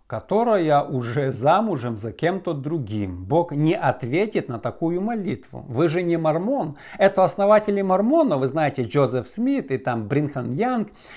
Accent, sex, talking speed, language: native, male, 145 wpm, Russian